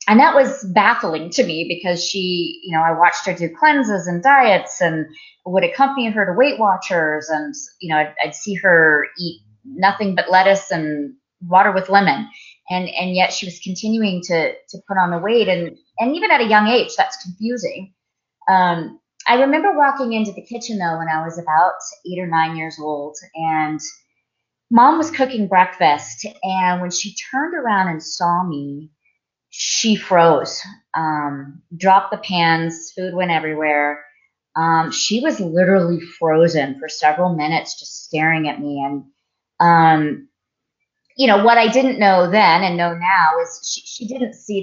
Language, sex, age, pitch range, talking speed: English, female, 30-49, 165-225 Hz, 170 wpm